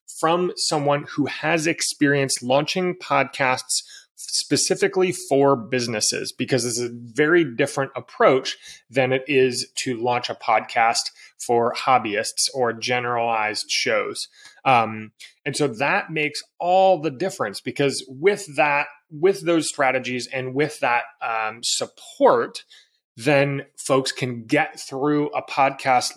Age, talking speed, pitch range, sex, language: 30-49, 125 wpm, 125-150 Hz, male, English